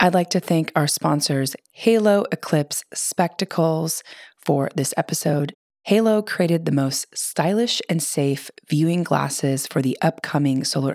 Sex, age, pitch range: female, 30-49, 140-180 Hz